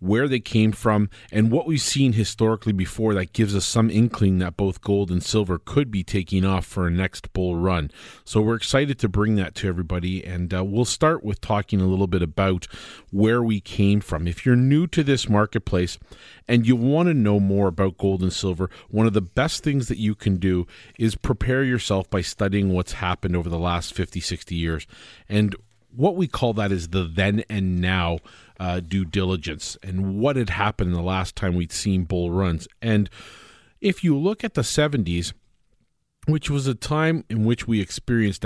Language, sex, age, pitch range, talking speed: English, male, 40-59, 90-115 Hz, 200 wpm